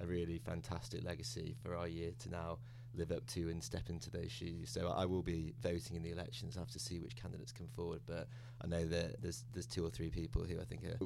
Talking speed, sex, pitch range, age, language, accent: 255 wpm, male, 85-105 Hz, 20-39, English, British